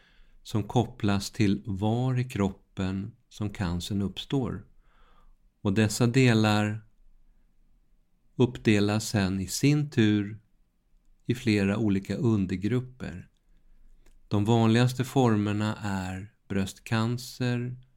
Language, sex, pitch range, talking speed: Swedish, male, 95-115 Hz, 85 wpm